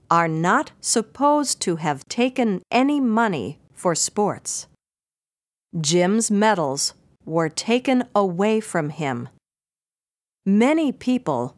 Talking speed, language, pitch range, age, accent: 100 wpm, English, 160-230 Hz, 50-69, American